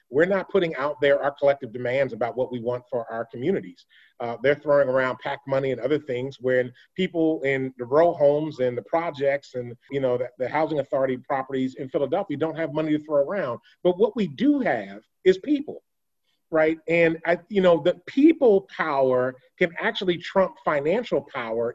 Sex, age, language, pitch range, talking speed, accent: male, 30-49, English, 130-180 Hz, 190 wpm, American